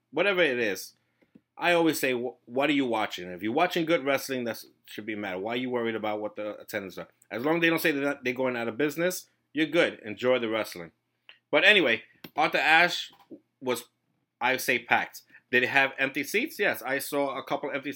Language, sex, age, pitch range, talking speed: English, male, 30-49, 115-145 Hz, 225 wpm